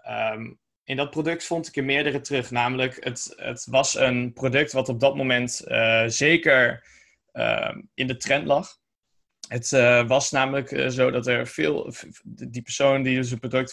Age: 20-39